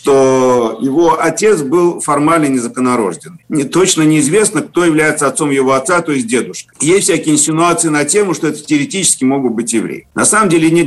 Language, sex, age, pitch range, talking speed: Russian, male, 50-69, 125-170 Hz, 175 wpm